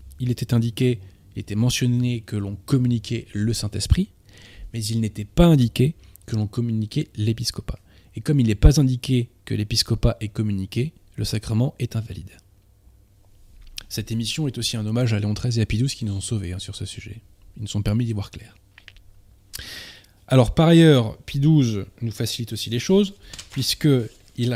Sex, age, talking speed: male, 20-39, 170 wpm